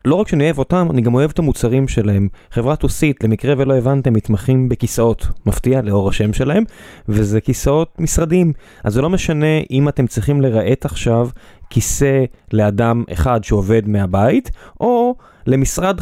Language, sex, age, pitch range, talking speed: Hebrew, male, 20-39, 115-150 Hz, 155 wpm